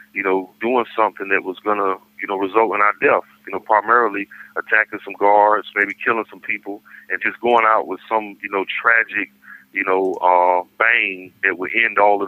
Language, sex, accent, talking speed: English, male, American, 205 wpm